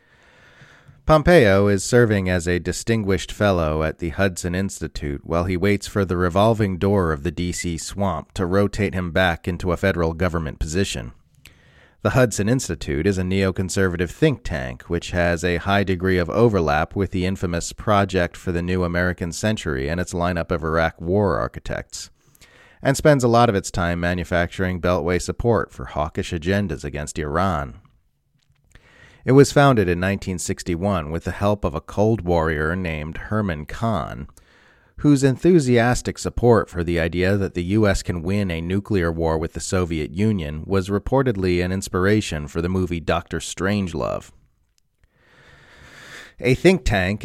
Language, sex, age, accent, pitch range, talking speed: English, male, 30-49, American, 85-105 Hz, 155 wpm